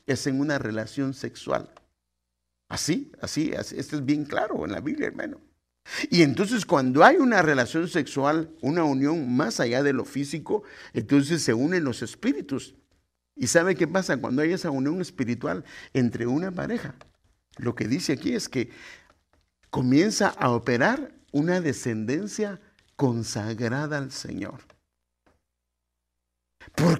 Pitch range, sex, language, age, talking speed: 135-205 Hz, male, English, 50-69, 140 wpm